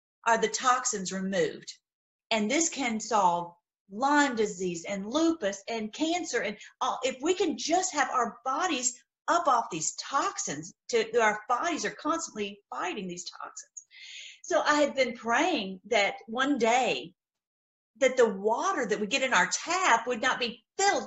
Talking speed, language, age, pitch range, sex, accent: 155 wpm, English, 40-59, 220-300 Hz, female, American